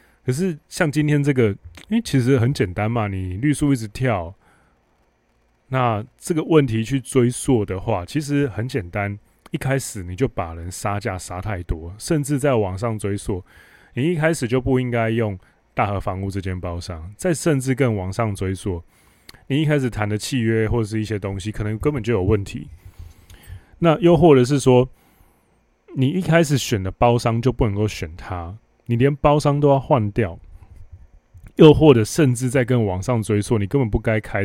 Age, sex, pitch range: 20-39, male, 95-130 Hz